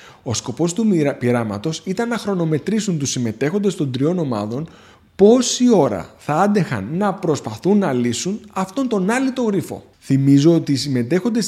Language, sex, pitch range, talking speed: Greek, male, 125-210 Hz, 145 wpm